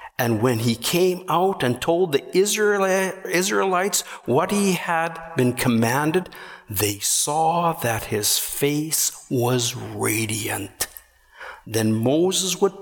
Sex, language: male, English